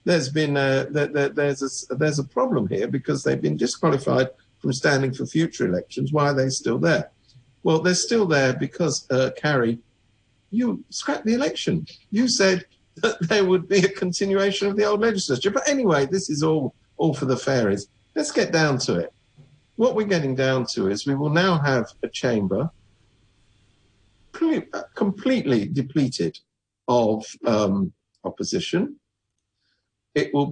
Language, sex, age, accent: English, male, 50-69, British